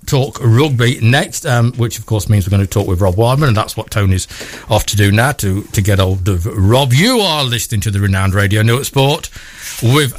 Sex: male